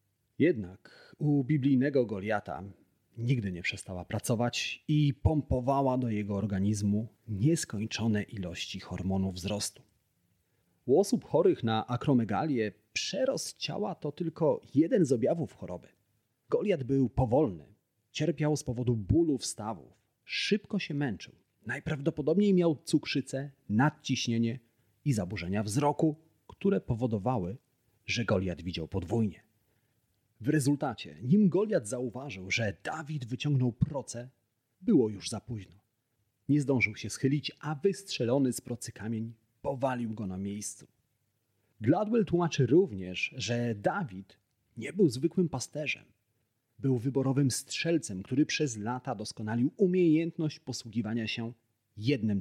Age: 40-59